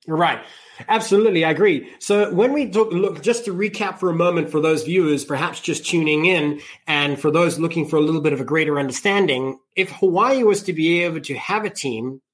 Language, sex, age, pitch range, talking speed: English, male, 30-49, 145-190 Hz, 215 wpm